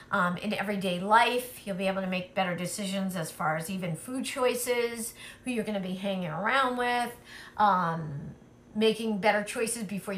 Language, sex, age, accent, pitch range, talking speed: English, female, 40-59, American, 190-245 Hz, 175 wpm